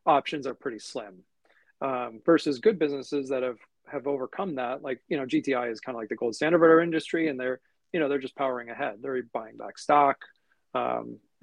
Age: 40-59